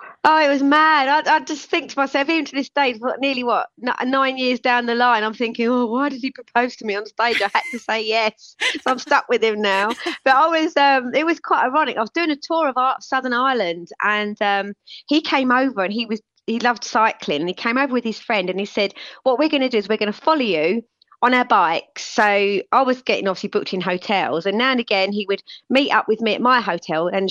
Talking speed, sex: 255 wpm, female